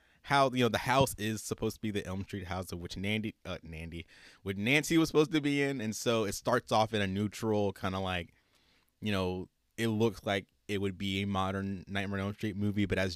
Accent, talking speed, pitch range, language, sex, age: American, 240 wpm, 95-120 Hz, English, male, 20-39